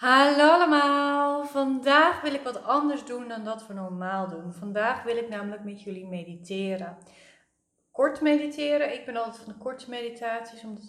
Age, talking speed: 30-49, 165 wpm